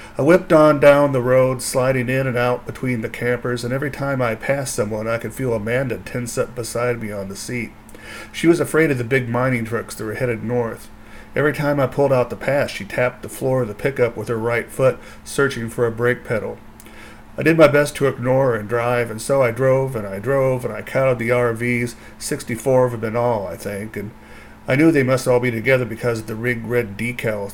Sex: male